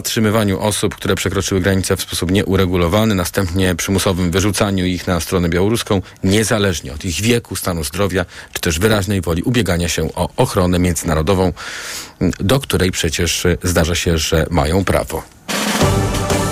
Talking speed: 140 wpm